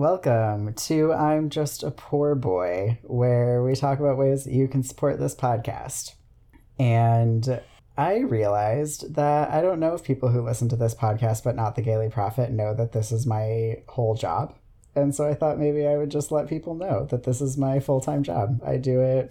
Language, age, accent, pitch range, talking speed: English, 30-49, American, 115-135 Hz, 200 wpm